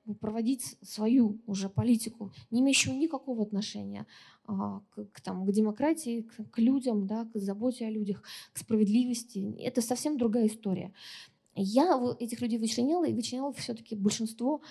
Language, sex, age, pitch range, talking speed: Russian, female, 20-39, 210-245 Hz, 140 wpm